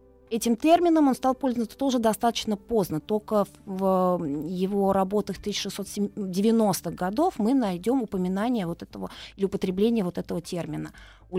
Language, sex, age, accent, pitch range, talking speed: Russian, female, 20-39, native, 180-235 Hz, 130 wpm